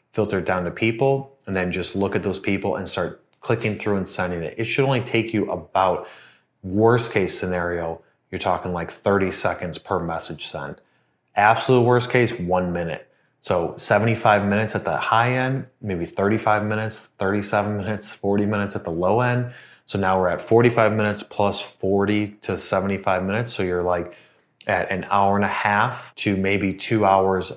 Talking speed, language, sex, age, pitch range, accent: 180 wpm, English, male, 30-49, 90-115 Hz, American